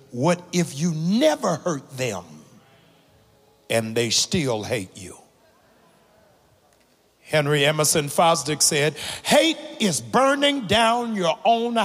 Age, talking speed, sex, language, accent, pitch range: 60-79, 105 wpm, male, English, American, 130-190 Hz